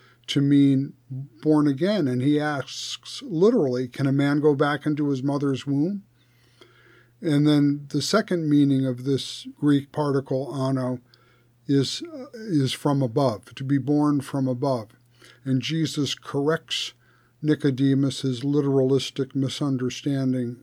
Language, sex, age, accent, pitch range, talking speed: English, male, 50-69, American, 125-150 Hz, 125 wpm